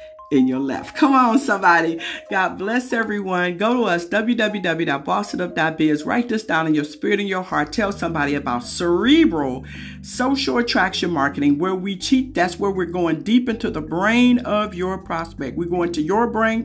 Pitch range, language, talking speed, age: 165-215 Hz, English, 175 wpm, 50-69